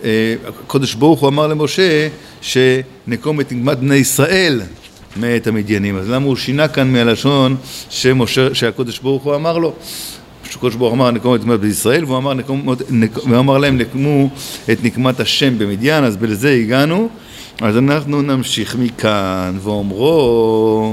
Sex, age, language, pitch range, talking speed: male, 50-69, Hebrew, 115-150 Hz, 140 wpm